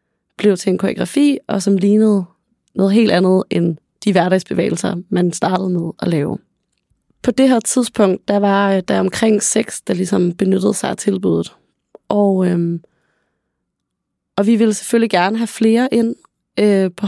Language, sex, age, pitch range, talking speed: Danish, female, 30-49, 185-220 Hz, 150 wpm